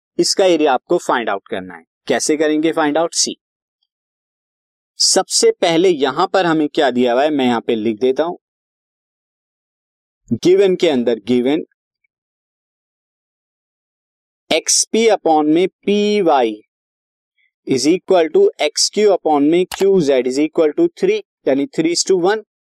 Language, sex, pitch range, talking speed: Hindi, male, 145-220 Hz, 145 wpm